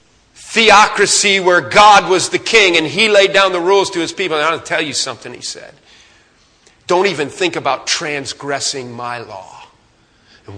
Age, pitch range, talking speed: 40-59, 170-230 Hz, 180 wpm